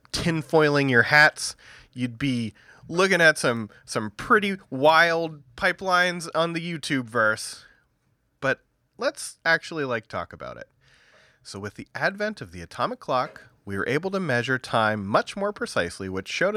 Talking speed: 150 wpm